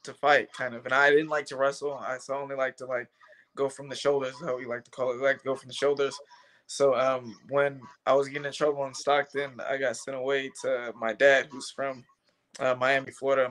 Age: 20-39